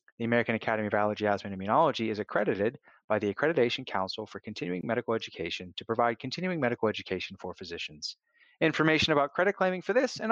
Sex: male